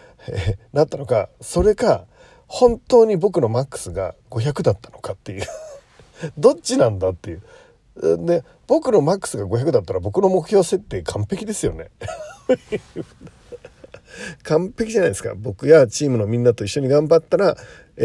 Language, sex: Japanese, male